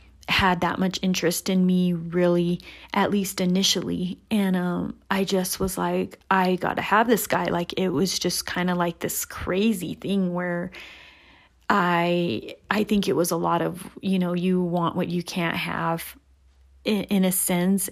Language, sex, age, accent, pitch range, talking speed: English, female, 30-49, American, 175-200 Hz, 180 wpm